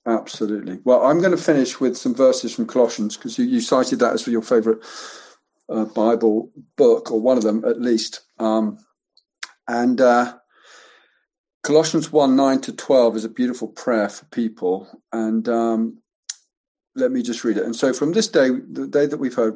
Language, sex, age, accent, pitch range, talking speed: English, male, 50-69, British, 115-155 Hz, 180 wpm